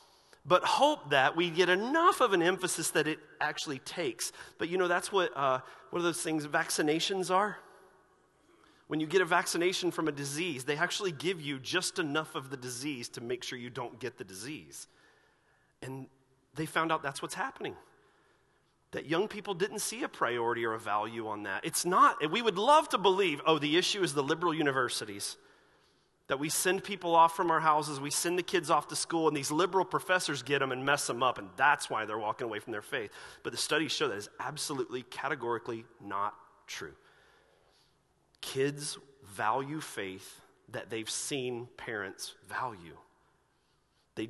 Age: 30-49